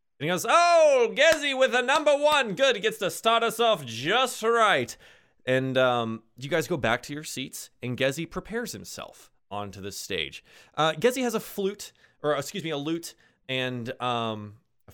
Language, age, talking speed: English, 20-39, 190 wpm